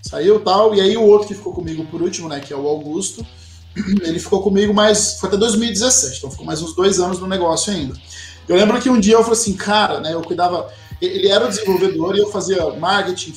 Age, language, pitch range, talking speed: 20-39, Portuguese, 165-225 Hz, 235 wpm